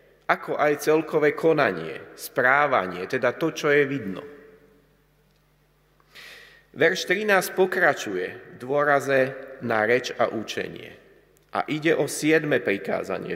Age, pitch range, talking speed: 40-59, 125-165 Hz, 105 wpm